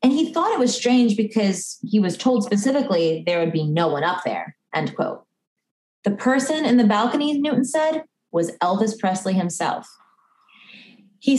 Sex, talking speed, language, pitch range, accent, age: female, 170 wpm, English, 200-250 Hz, American, 20-39